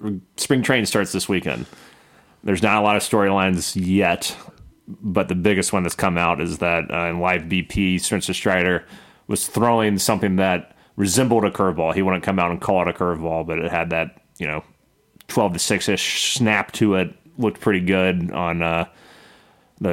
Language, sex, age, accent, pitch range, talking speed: English, male, 30-49, American, 90-105 Hz, 185 wpm